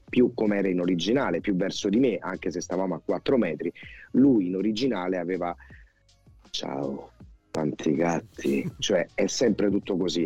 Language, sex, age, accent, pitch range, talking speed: Italian, male, 30-49, native, 90-110 Hz, 160 wpm